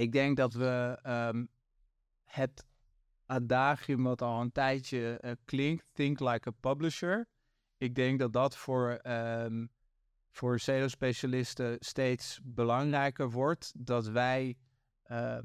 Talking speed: 120 wpm